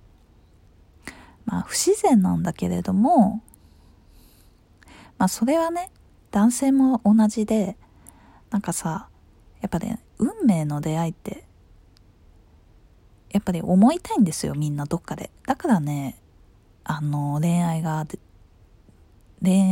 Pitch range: 140-220 Hz